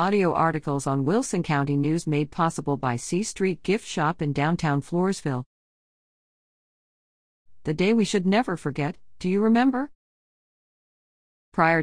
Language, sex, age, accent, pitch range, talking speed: English, female, 50-69, American, 140-195 Hz, 130 wpm